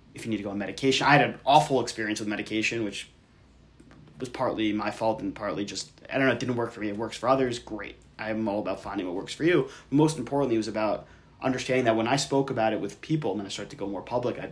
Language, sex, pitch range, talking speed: English, male, 105-135 Hz, 275 wpm